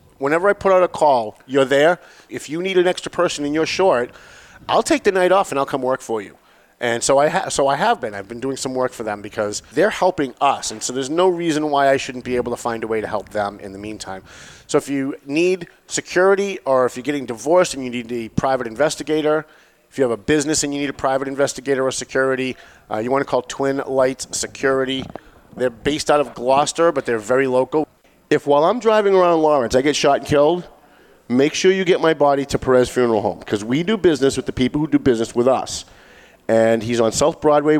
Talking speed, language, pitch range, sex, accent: 235 wpm, English, 115-150 Hz, male, American